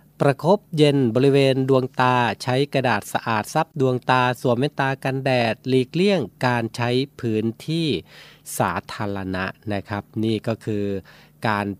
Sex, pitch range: male, 110-135 Hz